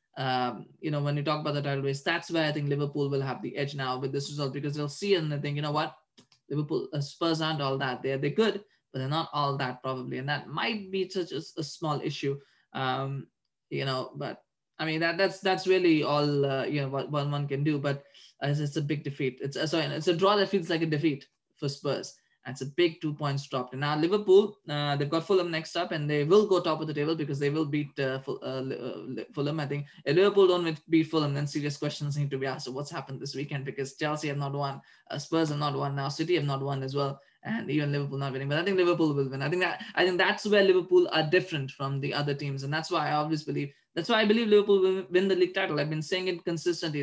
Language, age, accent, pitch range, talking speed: English, 20-39, Indian, 140-170 Hz, 265 wpm